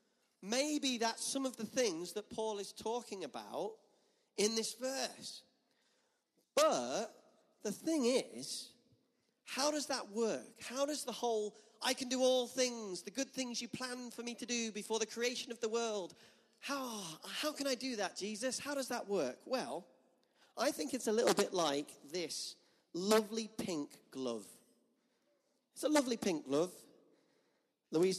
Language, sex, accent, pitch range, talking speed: English, male, British, 180-245 Hz, 160 wpm